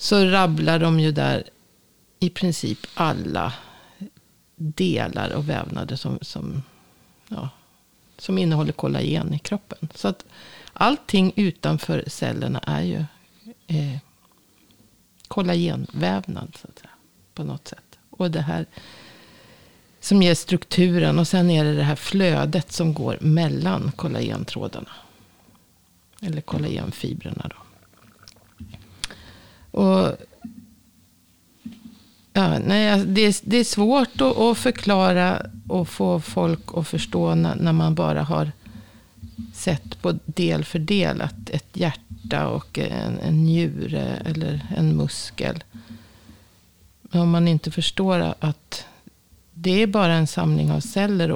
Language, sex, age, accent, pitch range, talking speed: Swedish, female, 50-69, native, 135-185 Hz, 115 wpm